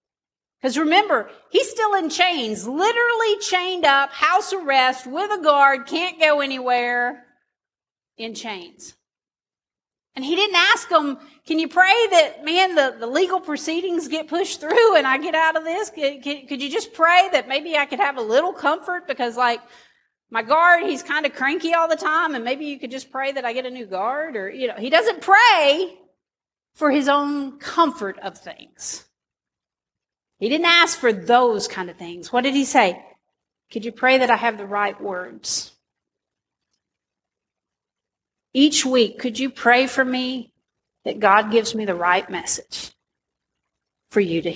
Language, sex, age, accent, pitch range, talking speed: English, female, 40-59, American, 245-340 Hz, 175 wpm